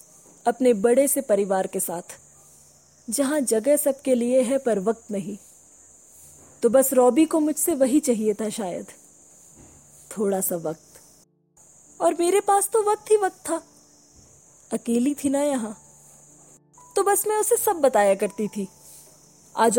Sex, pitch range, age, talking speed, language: female, 210-290 Hz, 20-39, 145 wpm, Hindi